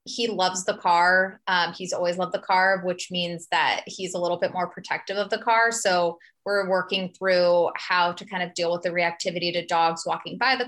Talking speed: 220 wpm